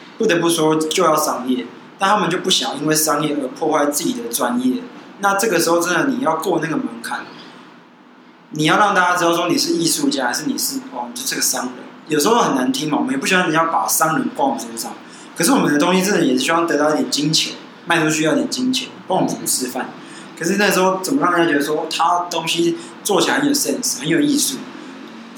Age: 20-39